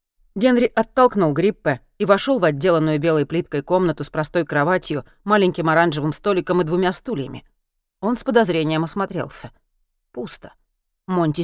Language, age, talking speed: Russian, 30-49, 130 wpm